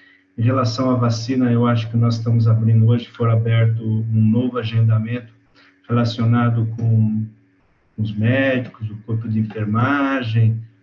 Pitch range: 110-120 Hz